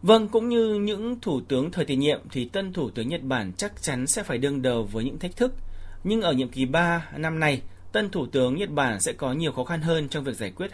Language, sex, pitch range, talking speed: Vietnamese, male, 110-165 Hz, 265 wpm